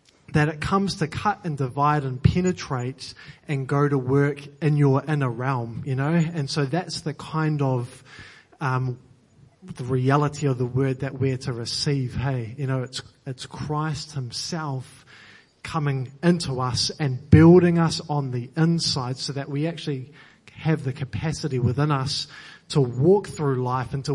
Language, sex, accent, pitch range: English, male, Australian, 130-155 Hz